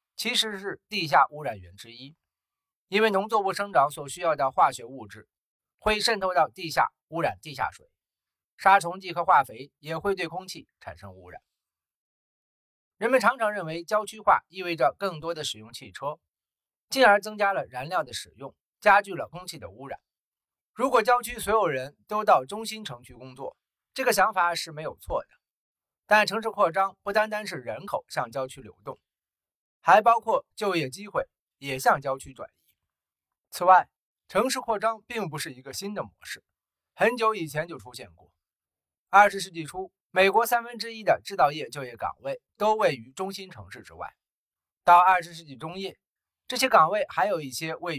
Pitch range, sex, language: 150-215 Hz, male, Chinese